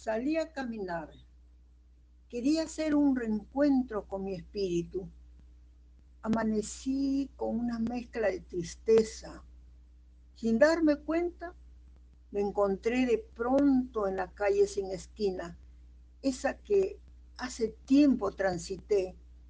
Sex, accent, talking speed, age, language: female, American, 100 wpm, 50-69, Spanish